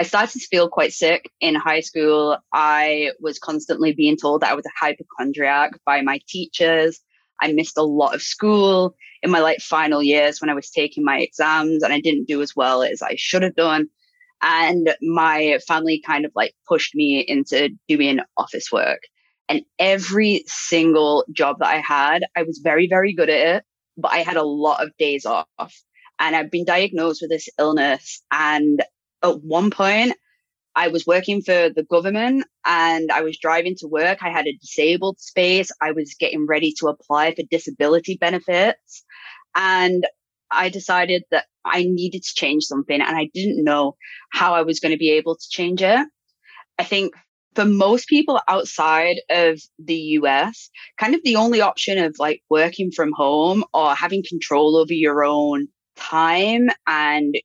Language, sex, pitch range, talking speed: English, female, 155-190 Hz, 180 wpm